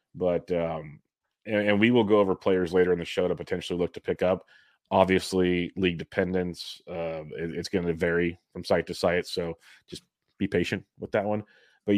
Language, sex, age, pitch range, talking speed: English, male, 30-49, 90-105 Hz, 200 wpm